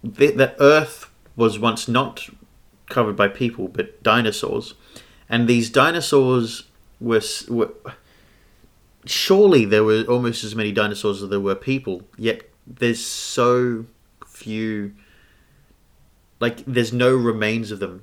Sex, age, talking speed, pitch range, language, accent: male, 30-49, 125 wpm, 105-125 Hz, English, Australian